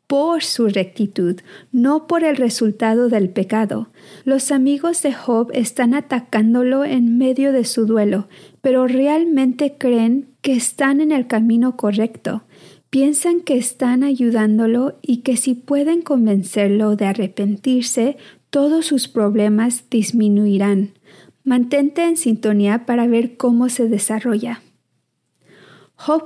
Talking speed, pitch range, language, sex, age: 120 wpm, 215-275 Hz, Spanish, female, 40-59